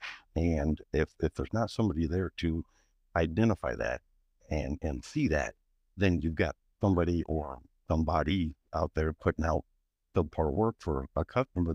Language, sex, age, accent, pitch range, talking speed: English, male, 60-79, American, 75-95 Hz, 155 wpm